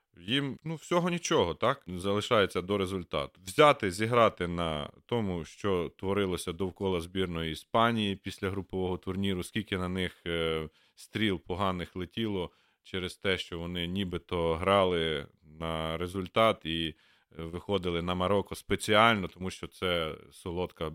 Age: 40-59